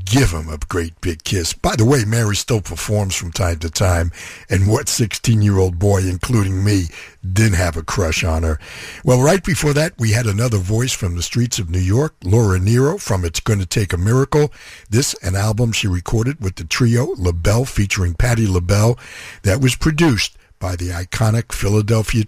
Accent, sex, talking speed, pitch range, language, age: American, male, 185 wpm, 90-130 Hz, English, 60-79